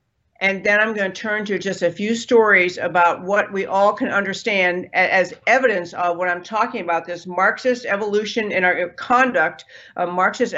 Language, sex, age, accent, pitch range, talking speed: English, female, 50-69, American, 185-245 Hz, 180 wpm